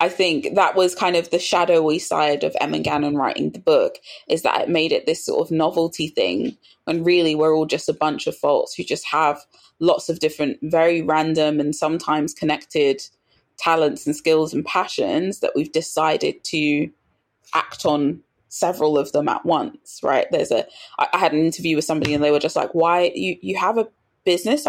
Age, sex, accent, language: 20-39, female, British, English